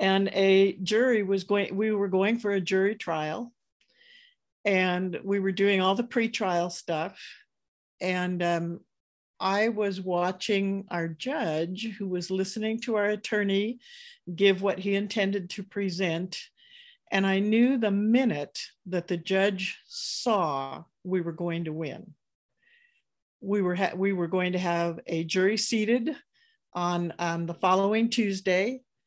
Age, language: 50-69, English